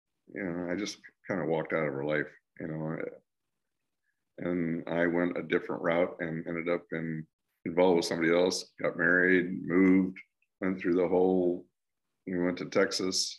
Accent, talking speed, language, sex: American, 170 wpm, English, male